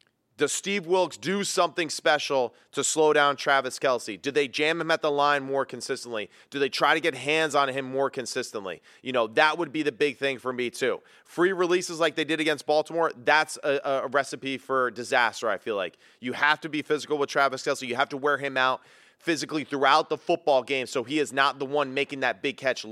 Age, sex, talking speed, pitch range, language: 30-49, male, 225 wpm, 130-160 Hz, English